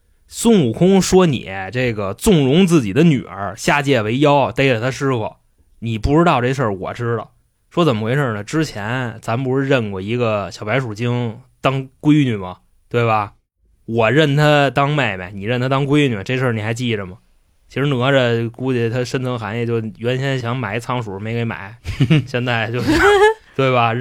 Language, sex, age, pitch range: Chinese, male, 20-39, 115-165 Hz